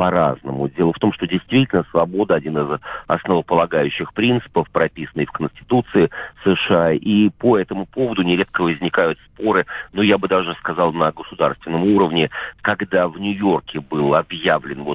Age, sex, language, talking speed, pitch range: 50-69, male, Russian, 135 wpm, 80-105 Hz